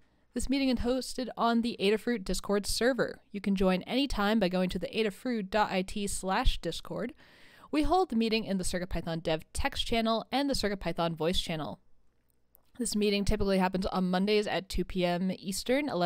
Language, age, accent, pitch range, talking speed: English, 20-39, American, 185-240 Hz, 165 wpm